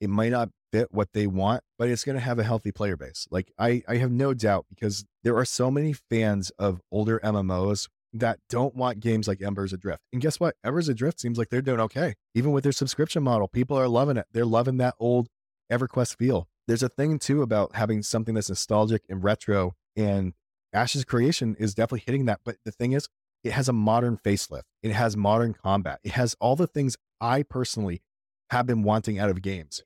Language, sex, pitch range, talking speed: English, male, 105-130 Hz, 215 wpm